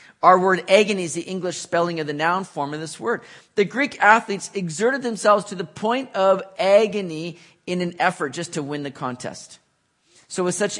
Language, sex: English, male